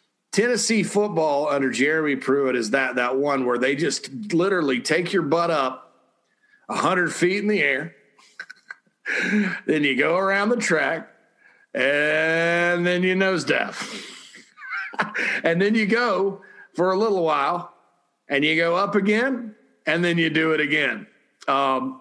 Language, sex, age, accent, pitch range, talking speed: English, male, 50-69, American, 135-180 Hz, 145 wpm